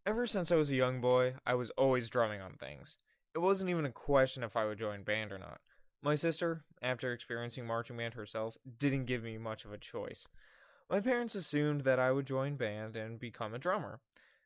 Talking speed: 210 wpm